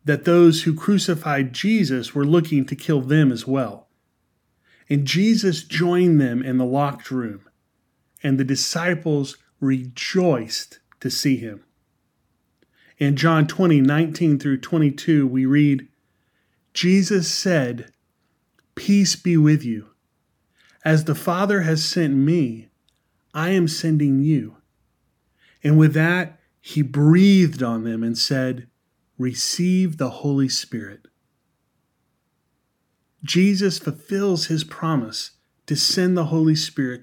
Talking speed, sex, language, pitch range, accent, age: 120 wpm, male, English, 130-165 Hz, American, 30-49